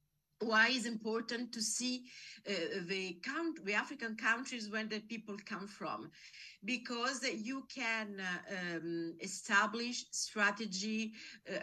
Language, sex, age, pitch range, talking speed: English, female, 50-69, 185-230 Hz, 120 wpm